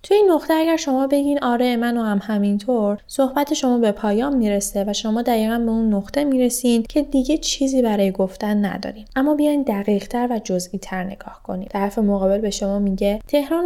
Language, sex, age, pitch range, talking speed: Persian, female, 10-29, 200-260 Hz, 190 wpm